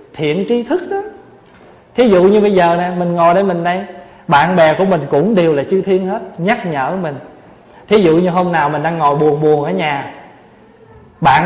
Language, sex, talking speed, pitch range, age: Vietnamese, male, 215 wpm, 150-195 Hz, 20-39